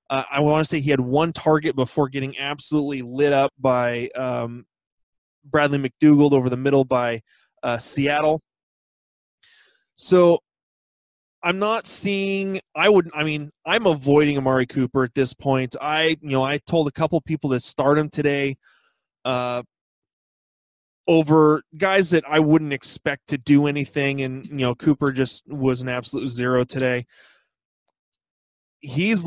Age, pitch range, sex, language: 20-39, 135-175 Hz, male, English